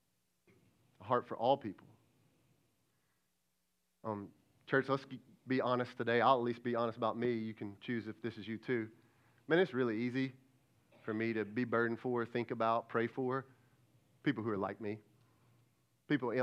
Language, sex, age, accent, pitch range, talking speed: English, male, 40-59, American, 115-130 Hz, 165 wpm